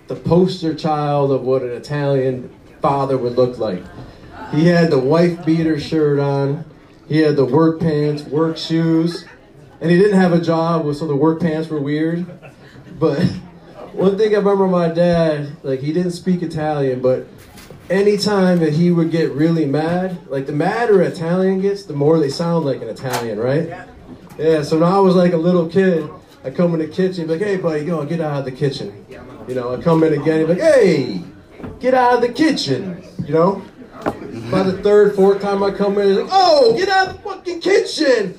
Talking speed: 200 wpm